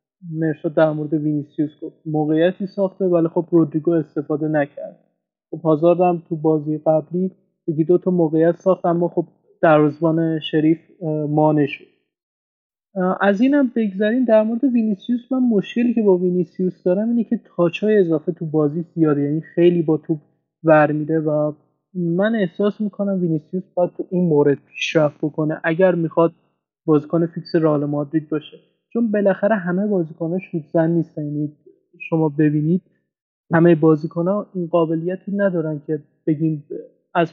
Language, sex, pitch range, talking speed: Persian, male, 160-195 Hz, 140 wpm